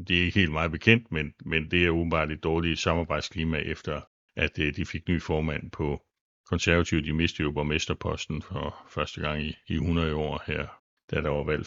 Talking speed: 195 wpm